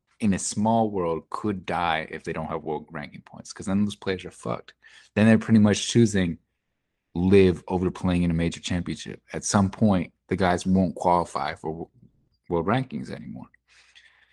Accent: American